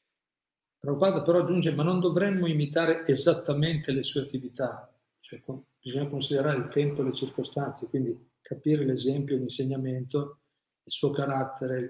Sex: male